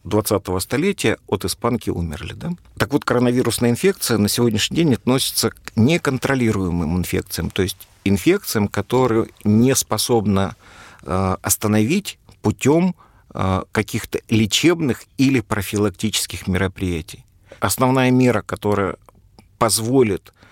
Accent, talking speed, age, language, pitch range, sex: native, 100 wpm, 50-69, Russian, 95-115 Hz, male